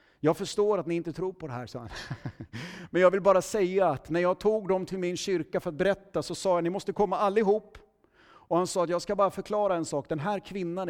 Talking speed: 255 wpm